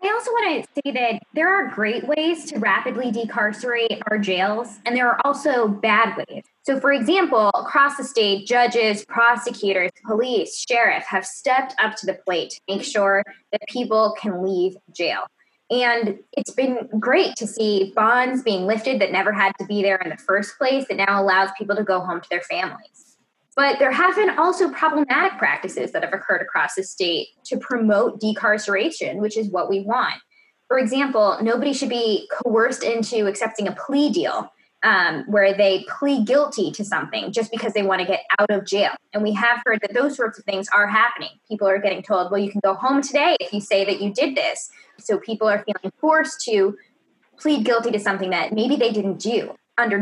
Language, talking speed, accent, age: English, 200 wpm, American, 10-29